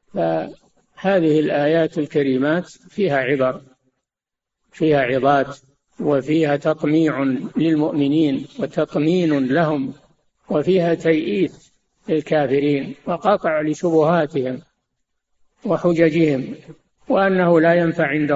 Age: 50-69